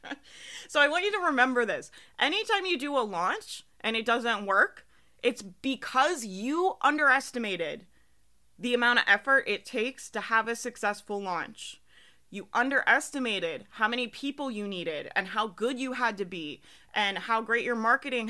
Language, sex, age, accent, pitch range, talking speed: English, female, 30-49, American, 200-260 Hz, 165 wpm